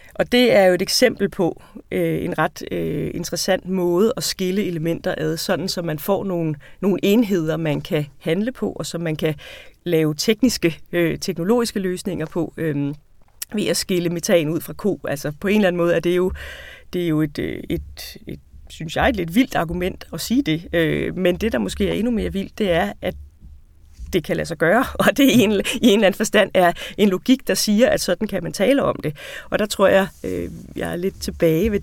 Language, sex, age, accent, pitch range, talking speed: Danish, female, 30-49, native, 160-200 Hz, 210 wpm